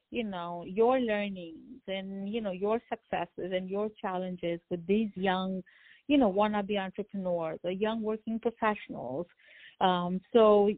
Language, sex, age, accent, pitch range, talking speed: English, female, 50-69, Indian, 180-215 Hz, 140 wpm